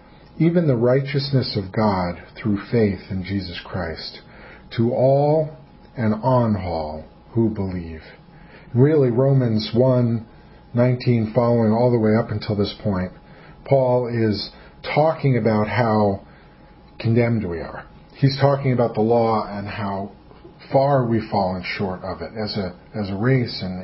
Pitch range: 105-140 Hz